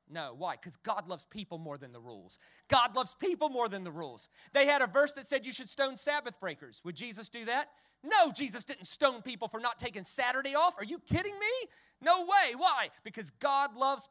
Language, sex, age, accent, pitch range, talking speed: English, male, 40-59, American, 185-295 Hz, 220 wpm